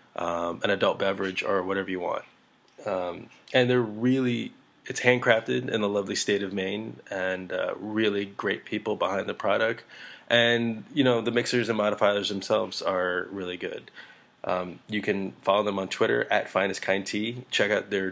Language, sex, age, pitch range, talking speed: English, male, 20-39, 95-115 Hz, 165 wpm